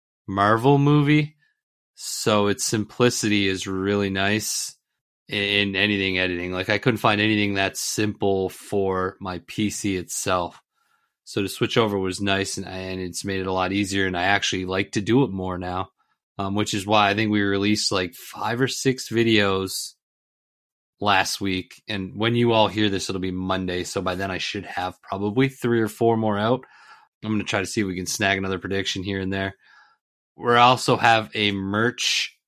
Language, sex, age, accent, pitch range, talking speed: English, male, 30-49, American, 95-115 Hz, 185 wpm